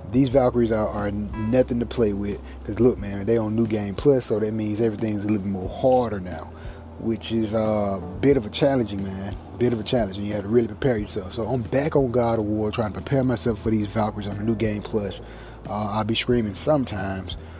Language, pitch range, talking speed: English, 100-120 Hz, 235 wpm